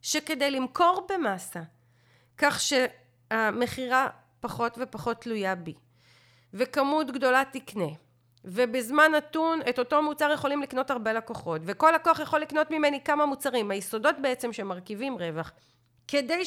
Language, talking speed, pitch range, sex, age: Hebrew, 120 wpm, 185-290 Hz, female, 40-59